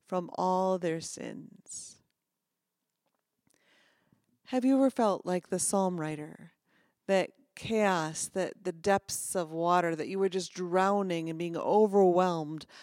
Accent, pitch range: American, 165-195 Hz